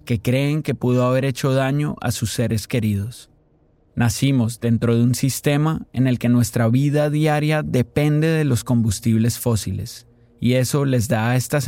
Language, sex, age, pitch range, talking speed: Spanish, male, 30-49, 115-140 Hz, 170 wpm